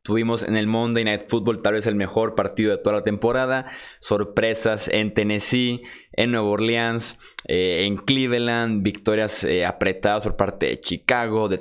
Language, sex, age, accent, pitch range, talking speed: Spanish, male, 20-39, Mexican, 100-120 Hz, 165 wpm